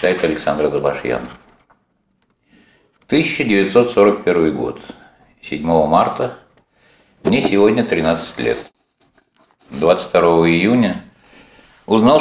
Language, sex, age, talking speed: Russian, male, 60-79, 70 wpm